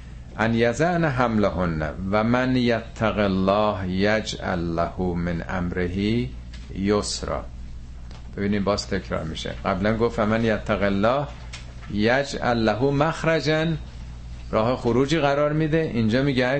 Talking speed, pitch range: 105 wpm, 80-130 Hz